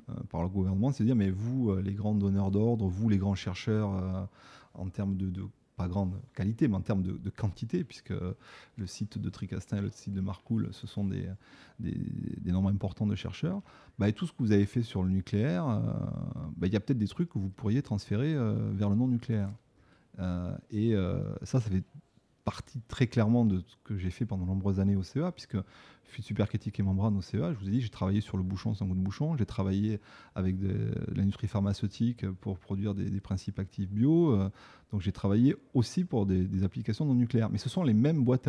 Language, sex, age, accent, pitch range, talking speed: French, male, 30-49, French, 100-125 Hz, 230 wpm